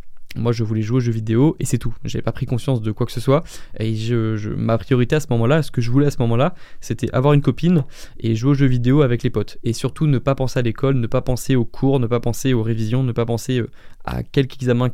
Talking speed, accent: 275 wpm, French